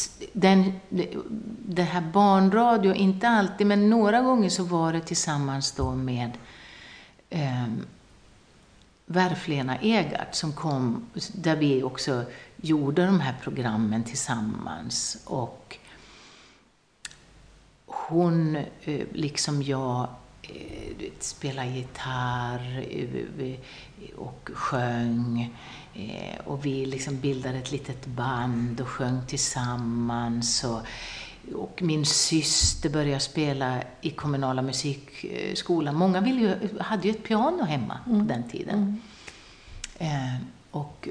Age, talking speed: 60-79, 90 wpm